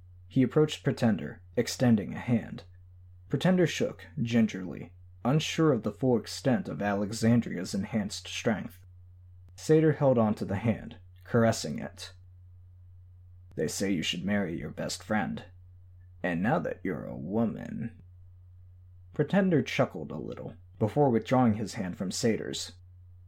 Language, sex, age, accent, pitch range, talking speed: English, male, 20-39, American, 90-115 Hz, 130 wpm